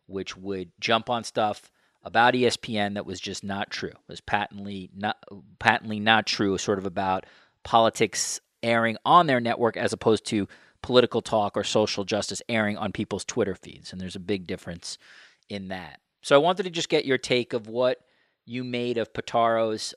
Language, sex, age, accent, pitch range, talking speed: English, male, 40-59, American, 100-120 Hz, 185 wpm